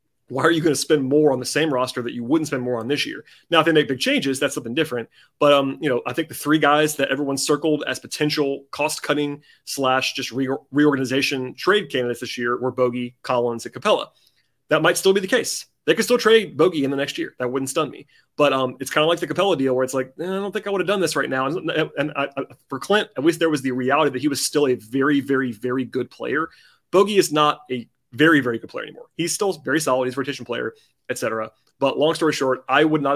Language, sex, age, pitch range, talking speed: English, male, 30-49, 130-155 Hz, 260 wpm